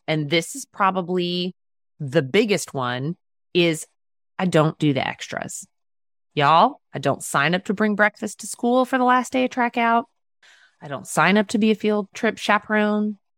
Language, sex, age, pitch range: English, female, 30-49, 170-250 Hz